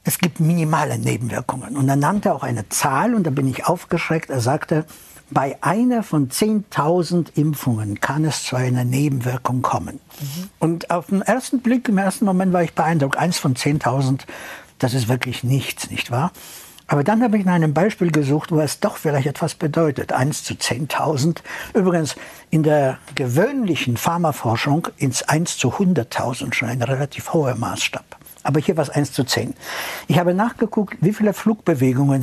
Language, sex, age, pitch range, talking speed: German, male, 60-79, 130-170 Hz, 170 wpm